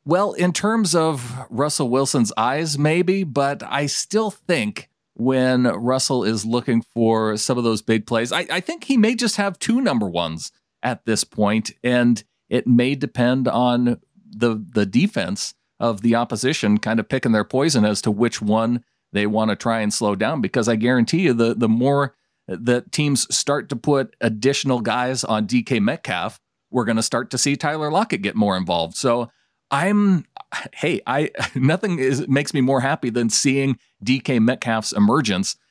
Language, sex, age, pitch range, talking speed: English, male, 40-59, 110-140 Hz, 175 wpm